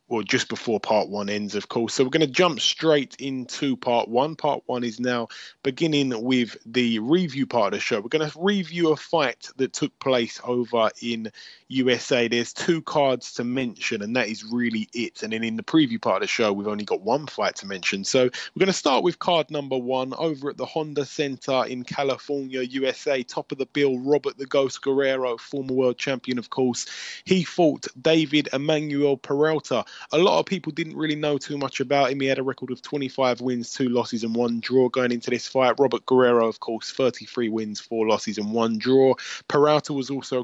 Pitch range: 120-145 Hz